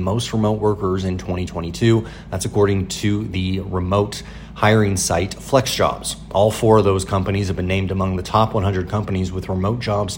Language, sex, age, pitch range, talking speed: English, male, 30-49, 95-115 Hz, 170 wpm